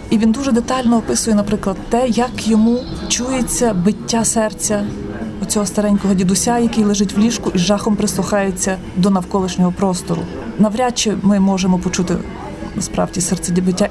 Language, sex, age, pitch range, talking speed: Ukrainian, female, 30-49, 180-220 Hz, 145 wpm